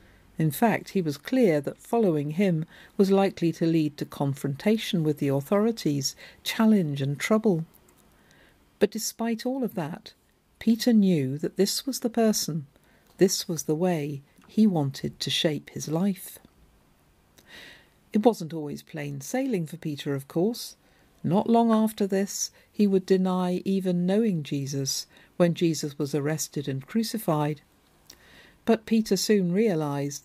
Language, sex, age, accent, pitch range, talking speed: English, female, 50-69, British, 145-205 Hz, 140 wpm